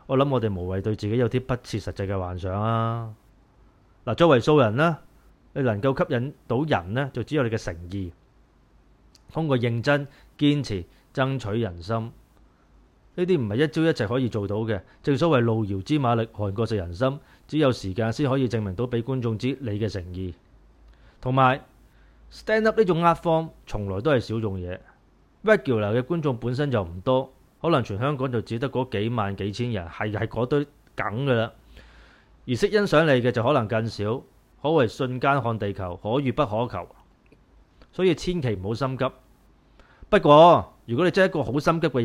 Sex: male